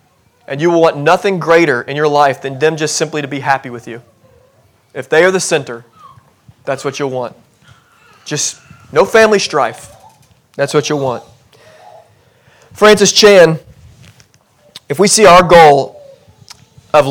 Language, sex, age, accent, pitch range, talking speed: English, male, 30-49, American, 130-165 Hz, 150 wpm